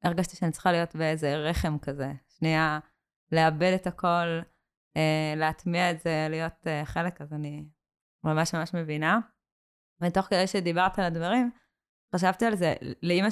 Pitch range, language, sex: 165-185 Hz, Hebrew, female